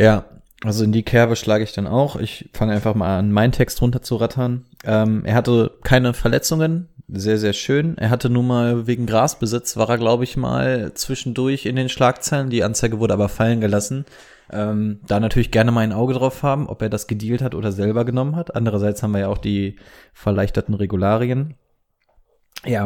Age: 20-39